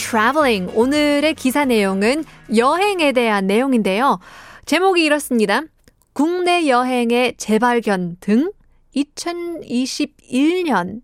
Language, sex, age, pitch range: Korean, female, 20-39, 200-280 Hz